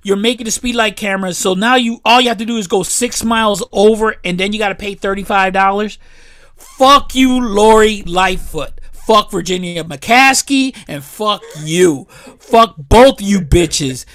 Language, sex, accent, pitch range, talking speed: English, male, American, 190-240 Hz, 170 wpm